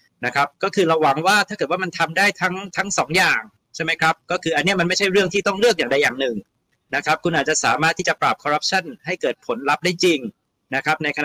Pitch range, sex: 140-180 Hz, male